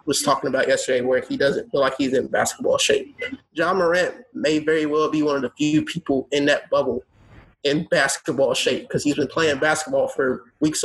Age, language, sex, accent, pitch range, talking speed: 30-49, English, male, American, 140-175 Hz, 205 wpm